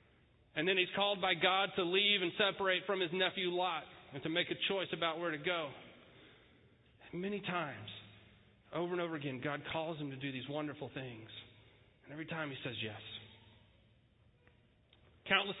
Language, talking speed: English, 170 wpm